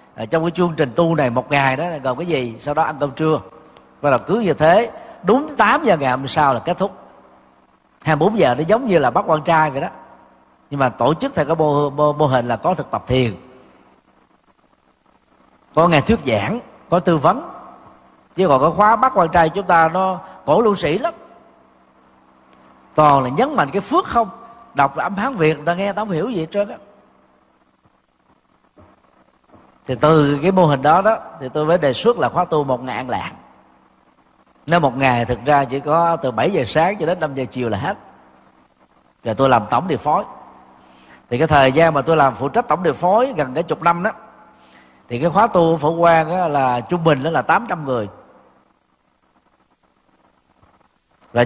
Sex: male